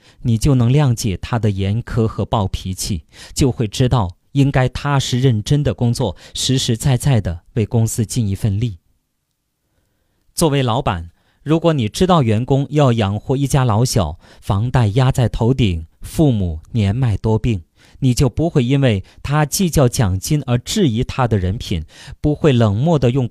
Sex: male